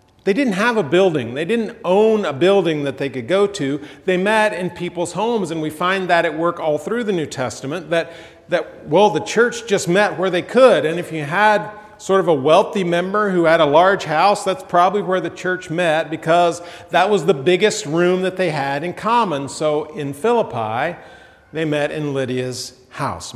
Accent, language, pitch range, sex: American, English, 150-185 Hz, male